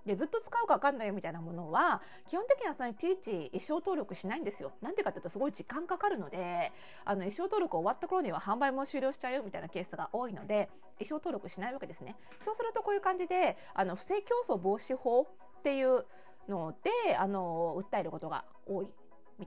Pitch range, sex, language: 185-275 Hz, female, Japanese